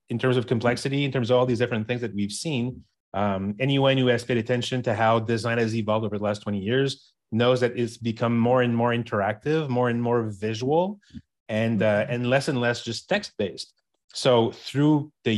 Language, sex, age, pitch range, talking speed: English, male, 30-49, 105-125 Hz, 205 wpm